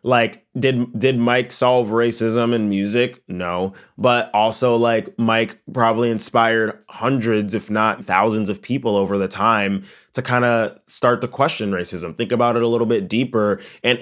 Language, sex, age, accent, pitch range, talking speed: English, male, 20-39, American, 100-120 Hz, 165 wpm